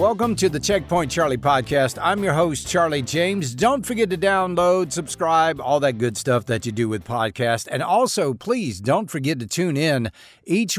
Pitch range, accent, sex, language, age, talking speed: 125-190 Hz, American, male, English, 50-69, 190 wpm